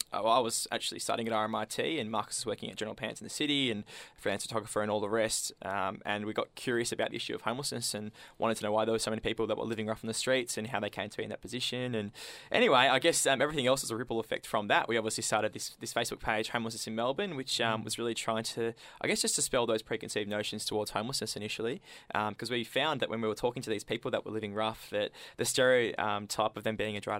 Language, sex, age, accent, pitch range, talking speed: English, male, 20-39, Australian, 110-120 Hz, 270 wpm